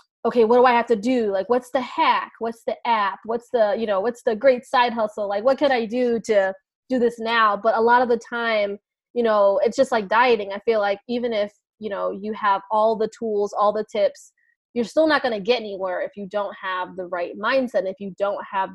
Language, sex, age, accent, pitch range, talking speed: English, female, 20-39, American, 200-245 Hz, 245 wpm